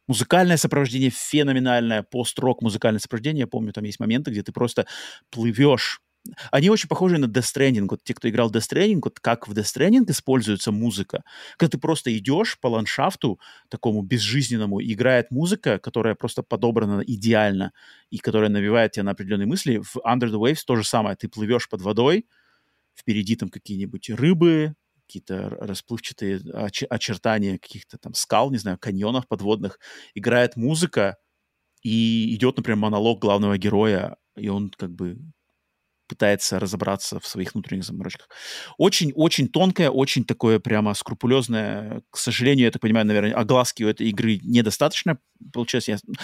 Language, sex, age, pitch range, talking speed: Russian, male, 30-49, 105-130 Hz, 145 wpm